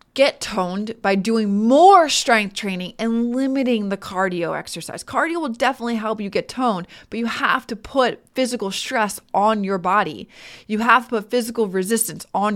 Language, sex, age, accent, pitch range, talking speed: English, female, 20-39, American, 185-230 Hz, 170 wpm